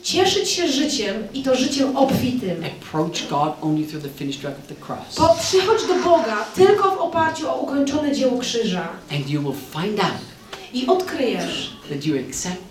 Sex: female